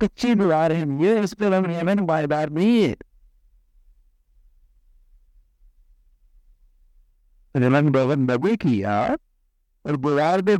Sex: male